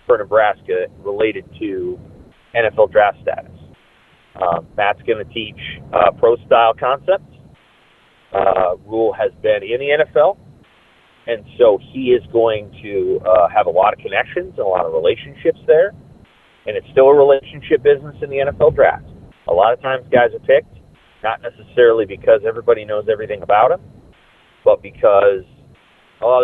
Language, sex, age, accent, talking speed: English, male, 30-49, American, 155 wpm